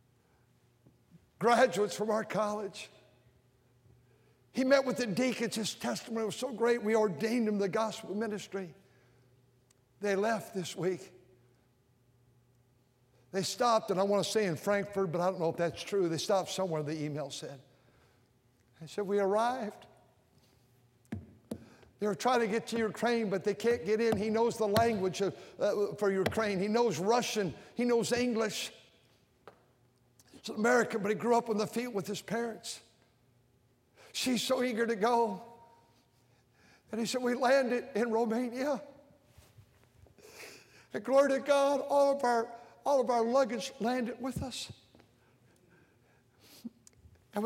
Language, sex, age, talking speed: English, male, 60-79, 140 wpm